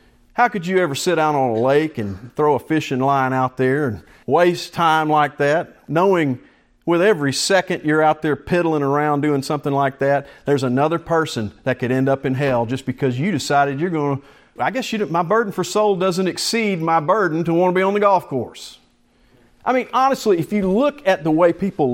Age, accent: 40-59, American